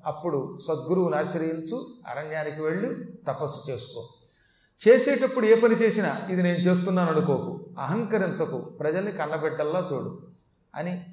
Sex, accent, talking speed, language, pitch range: male, native, 100 wpm, Telugu, 155-205 Hz